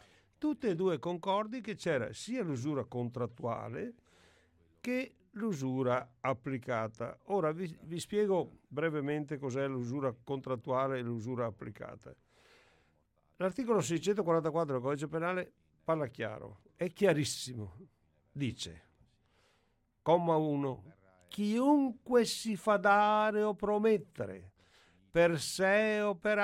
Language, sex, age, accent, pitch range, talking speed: Italian, male, 50-69, native, 125-200 Hz, 100 wpm